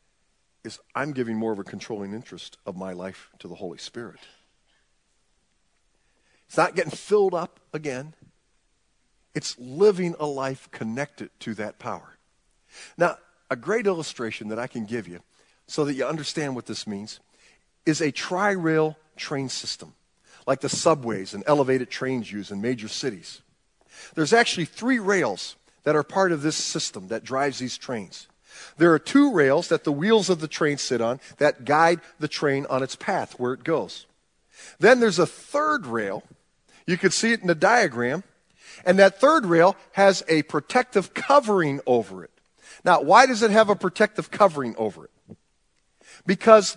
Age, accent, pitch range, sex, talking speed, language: 50-69, American, 130-205 Hz, male, 165 wpm, English